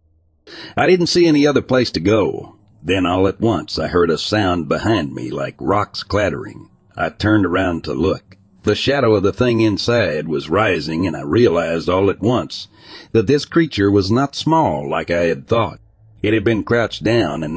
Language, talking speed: English, 190 wpm